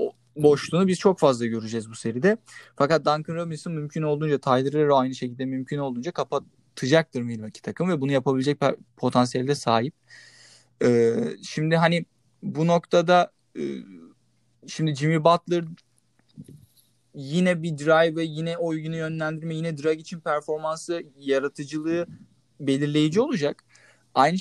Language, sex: Turkish, male